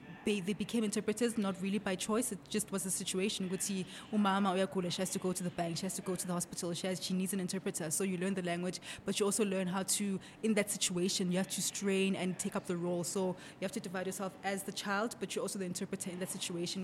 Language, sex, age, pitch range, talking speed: English, female, 20-39, 185-210 Hz, 270 wpm